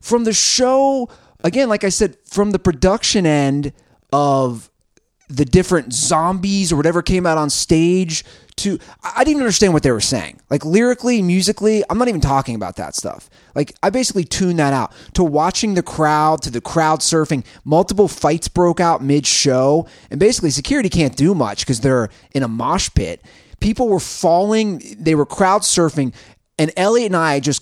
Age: 30-49